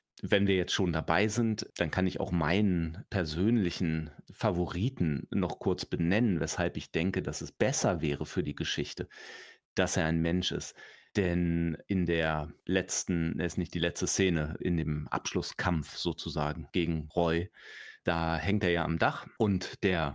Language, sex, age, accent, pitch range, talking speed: German, male, 30-49, German, 85-105 Hz, 165 wpm